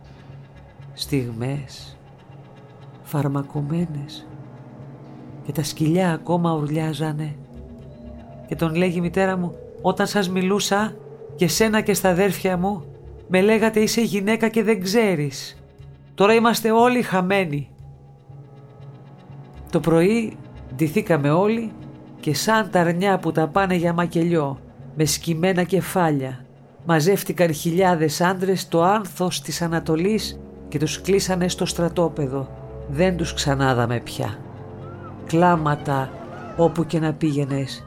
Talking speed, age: 110 wpm, 50-69